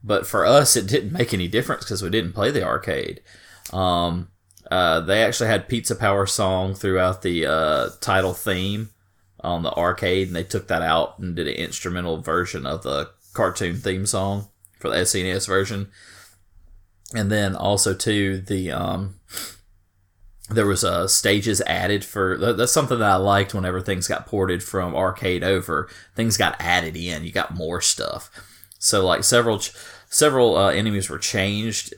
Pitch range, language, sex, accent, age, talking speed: 90-105 Hz, English, male, American, 30-49, 165 wpm